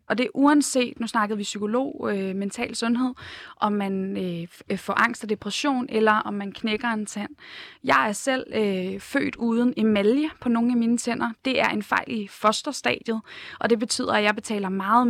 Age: 20-39